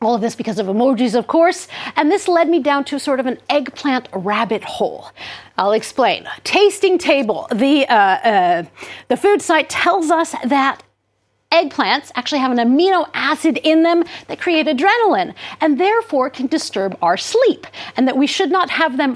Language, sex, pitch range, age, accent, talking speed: English, female, 240-335 Hz, 50-69, American, 180 wpm